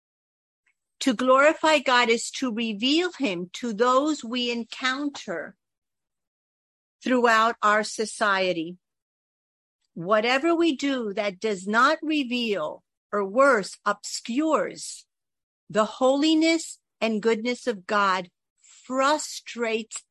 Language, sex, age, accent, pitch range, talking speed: English, female, 50-69, American, 195-255 Hz, 95 wpm